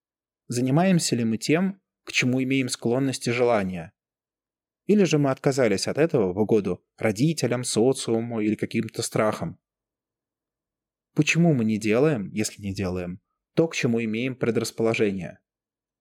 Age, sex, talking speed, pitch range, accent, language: 20-39, male, 130 wpm, 110-155 Hz, native, Russian